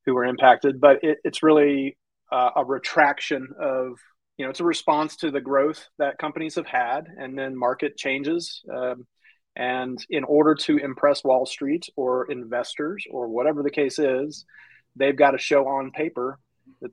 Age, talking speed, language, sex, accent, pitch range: 30-49, 170 wpm, English, male, American, 125-150 Hz